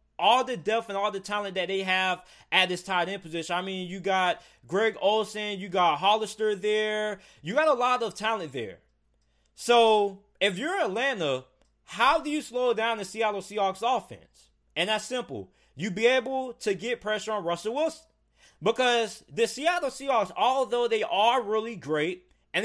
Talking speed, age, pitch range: 175 wpm, 20-39, 190-235 Hz